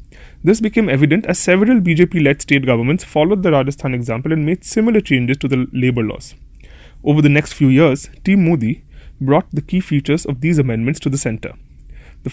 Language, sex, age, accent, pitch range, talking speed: English, male, 30-49, Indian, 130-165 Hz, 185 wpm